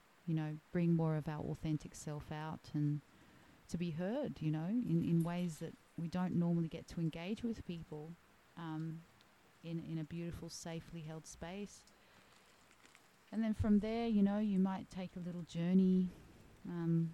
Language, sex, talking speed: English, female, 170 wpm